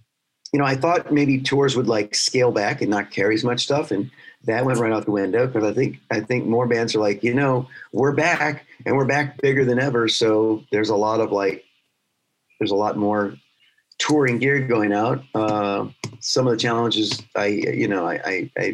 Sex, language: male, English